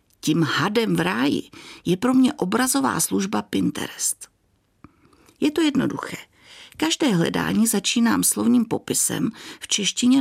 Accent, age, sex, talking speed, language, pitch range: native, 50-69, female, 120 wpm, Czech, 205-290 Hz